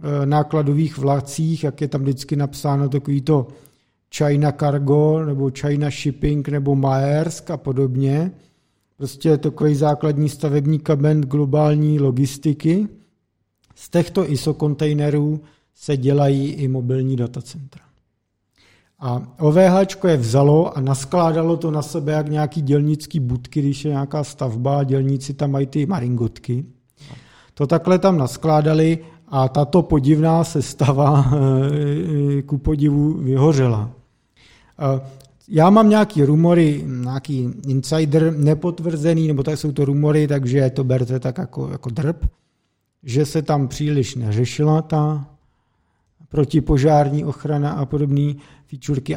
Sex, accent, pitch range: male, native, 135-155 Hz